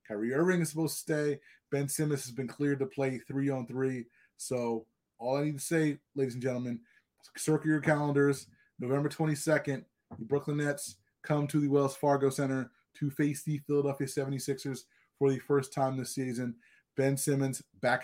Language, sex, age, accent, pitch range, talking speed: English, male, 20-39, American, 125-150 Hz, 175 wpm